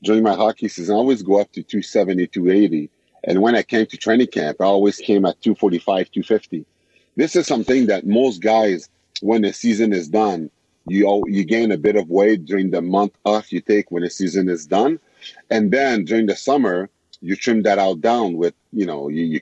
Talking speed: 205 wpm